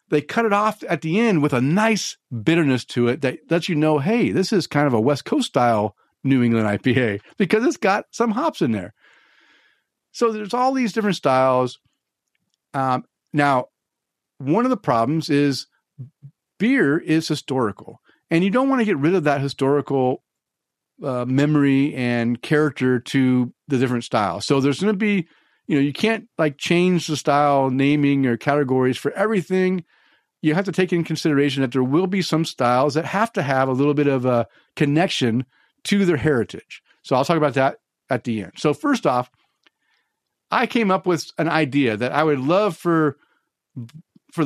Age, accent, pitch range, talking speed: 50-69, American, 130-180 Hz, 185 wpm